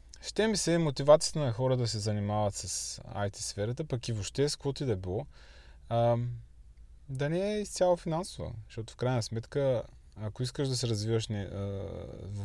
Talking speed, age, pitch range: 170 wpm, 20-39, 85-120 Hz